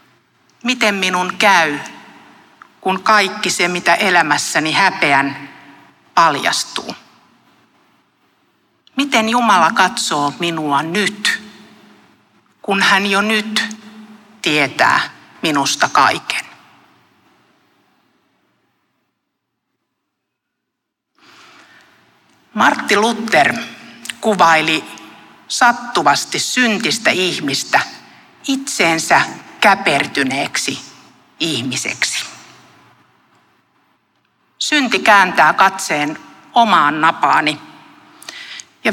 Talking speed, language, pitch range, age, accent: 55 wpm, Finnish, 155-215 Hz, 60-79, native